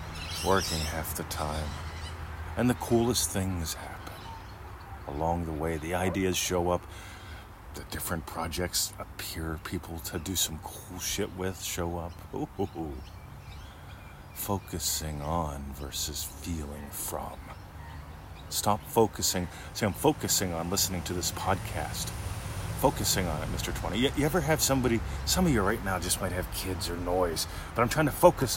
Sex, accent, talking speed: male, American, 145 wpm